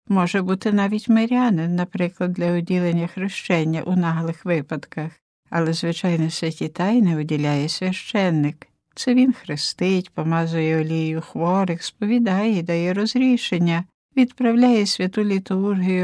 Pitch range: 175-215 Hz